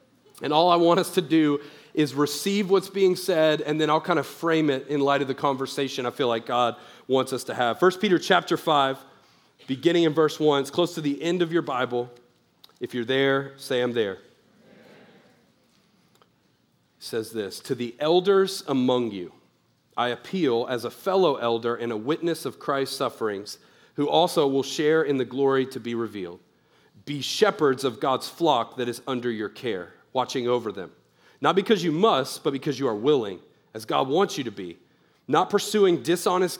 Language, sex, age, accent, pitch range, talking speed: English, male, 40-59, American, 130-170 Hz, 190 wpm